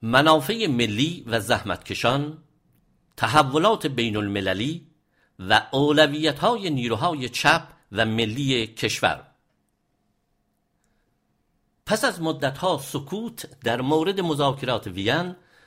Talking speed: 90 wpm